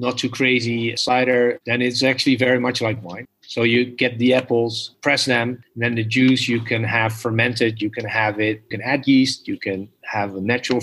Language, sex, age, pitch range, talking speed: English, male, 30-49, 110-125 Hz, 205 wpm